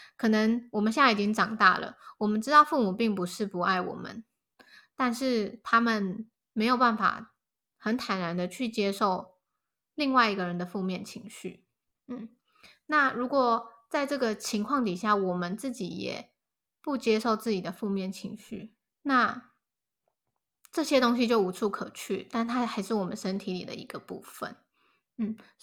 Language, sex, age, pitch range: Chinese, female, 20-39, 200-245 Hz